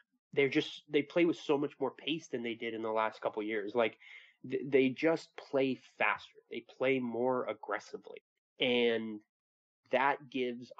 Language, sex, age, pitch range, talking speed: English, male, 20-39, 120-160 Hz, 160 wpm